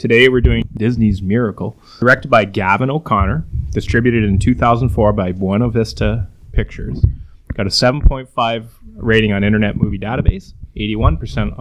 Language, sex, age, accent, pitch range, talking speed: English, male, 30-49, American, 105-130 Hz, 130 wpm